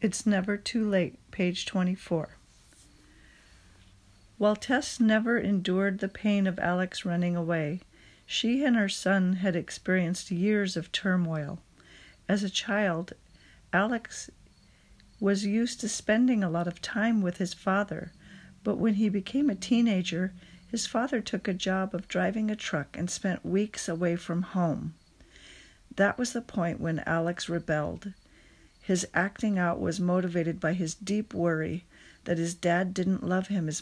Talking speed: 150 wpm